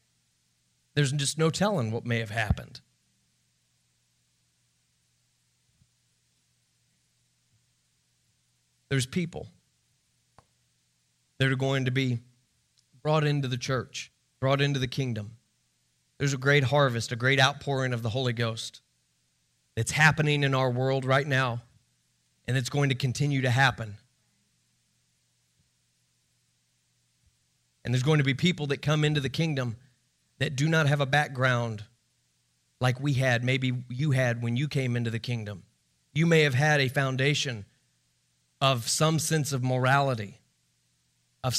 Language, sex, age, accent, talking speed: English, male, 30-49, American, 130 wpm